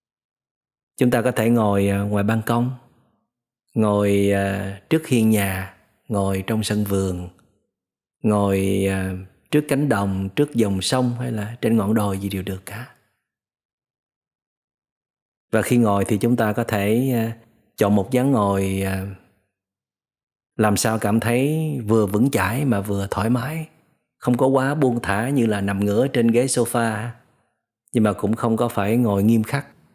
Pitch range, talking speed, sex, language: 100-120 Hz, 150 wpm, male, Vietnamese